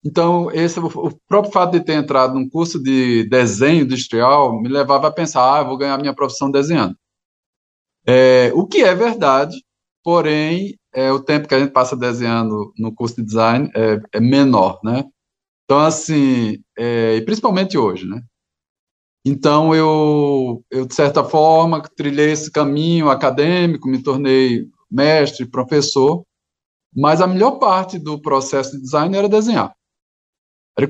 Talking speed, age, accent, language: 150 wpm, 20-39, Brazilian, Portuguese